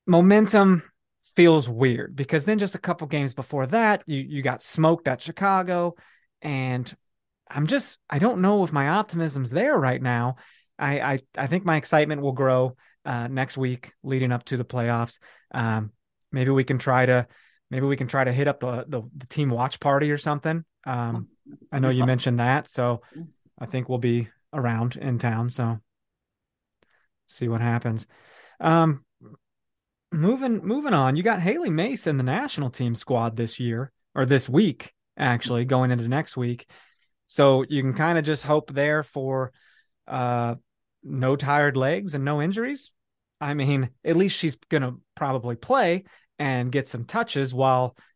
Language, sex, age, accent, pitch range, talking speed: English, male, 30-49, American, 125-160 Hz, 170 wpm